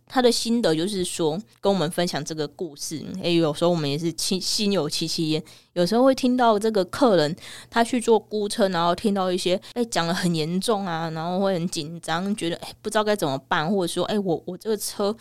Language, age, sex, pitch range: Chinese, 20-39, female, 165-210 Hz